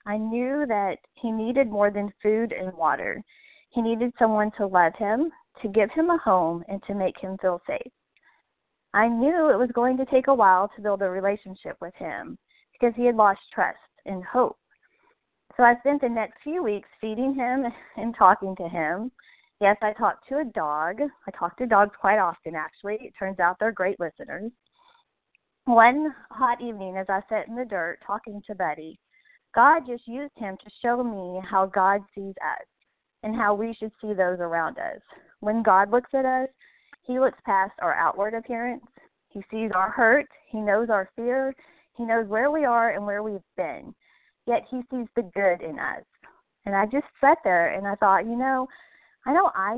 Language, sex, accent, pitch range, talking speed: English, female, American, 195-260 Hz, 195 wpm